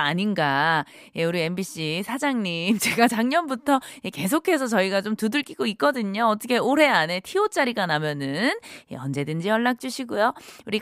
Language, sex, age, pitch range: Korean, female, 20-39, 195-300 Hz